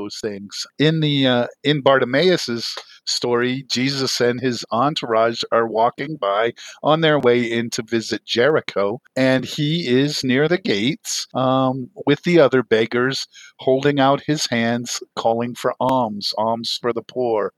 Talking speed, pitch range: 145 wpm, 120-140 Hz